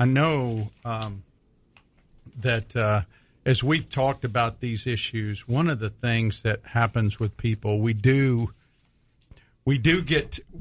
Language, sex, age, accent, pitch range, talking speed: English, male, 50-69, American, 110-135 Hz, 135 wpm